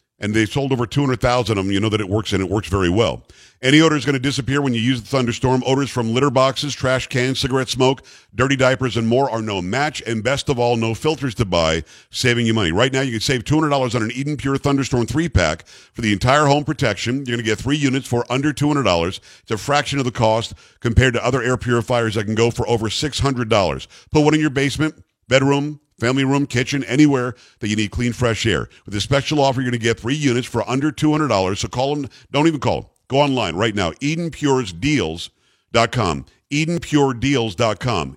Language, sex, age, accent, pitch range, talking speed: English, male, 50-69, American, 115-140 Hz, 220 wpm